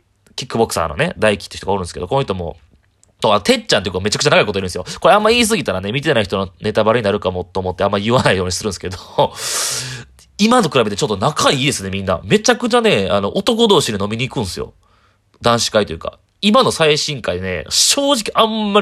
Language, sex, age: Japanese, male, 30-49